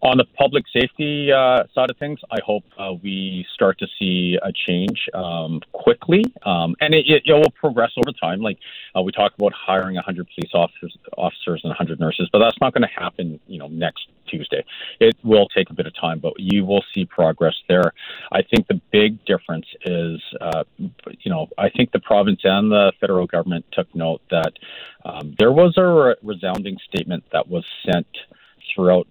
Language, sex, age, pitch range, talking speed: English, male, 40-59, 85-110 Hz, 195 wpm